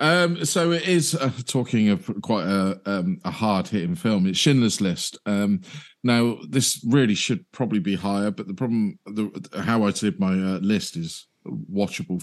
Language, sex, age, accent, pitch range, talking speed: English, male, 40-59, British, 100-135 Hz, 175 wpm